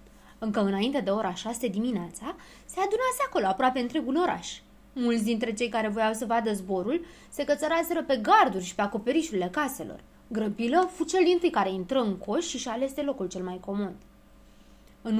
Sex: female